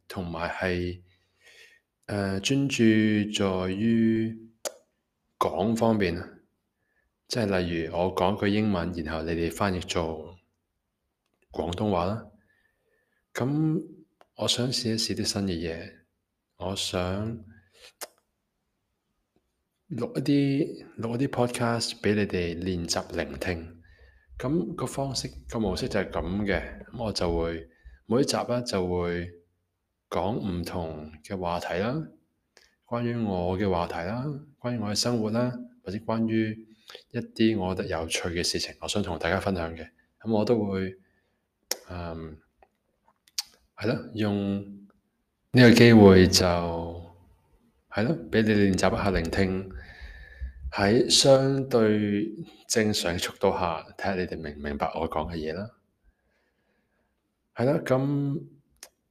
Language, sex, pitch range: English, male, 85-115 Hz